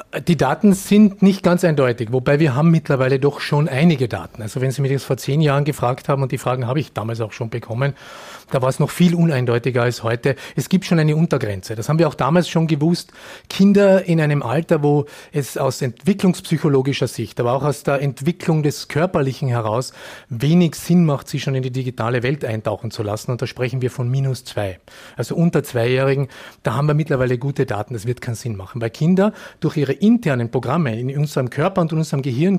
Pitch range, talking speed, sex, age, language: 125-170 Hz, 215 wpm, male, 30-49, German